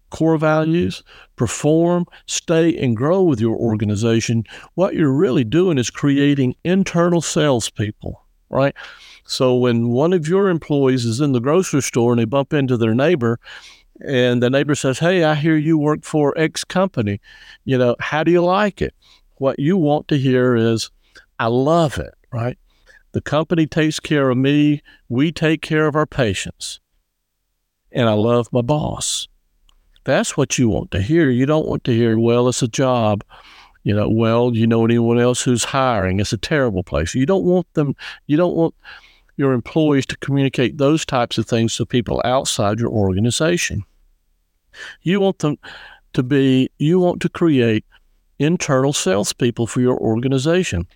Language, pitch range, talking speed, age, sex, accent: English, 115-155 Hz, 170 wpm, 50-69, male, American